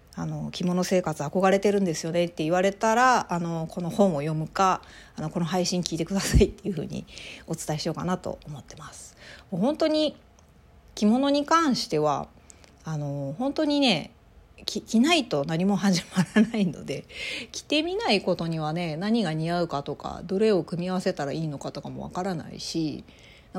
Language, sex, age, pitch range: Japanese, female, 40-59, 165-235 Hz